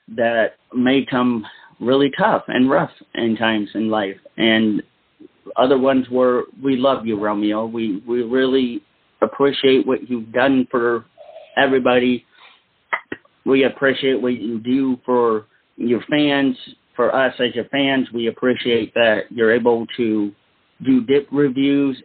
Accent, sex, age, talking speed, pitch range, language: American, male, 40-59, 135 wpm, 115-135 Hz, English